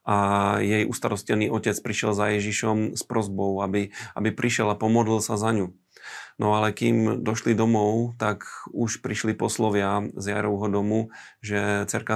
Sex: male